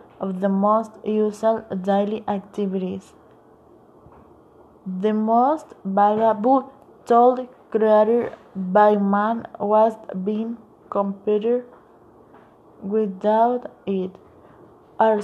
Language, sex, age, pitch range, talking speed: Italian, female, 20-39, 200-225 Hz, 75 wpm